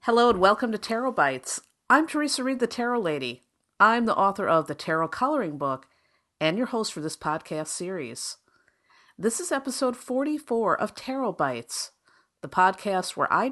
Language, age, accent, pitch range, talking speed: English, 50-69, American, 155-230 Hz, 170 wpm